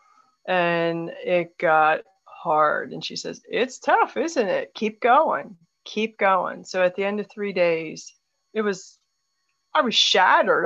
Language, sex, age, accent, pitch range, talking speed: English, female, 40-59, American, 180-225 Hz, 150 wpm